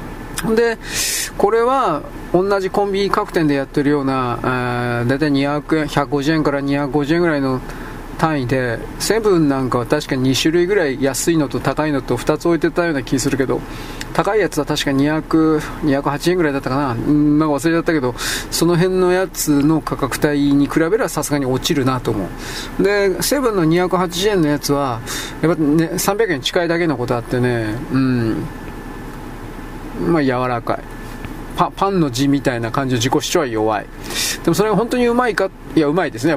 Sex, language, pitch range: male, Japanese, 135-170 Hz